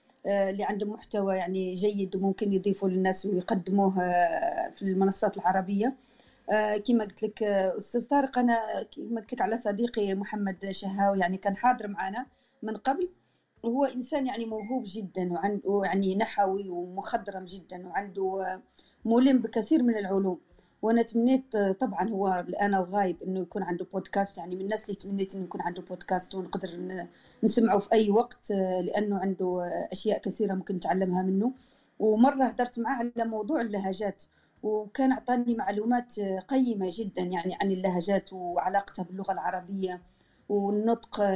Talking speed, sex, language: 135 wpm, female, Arabic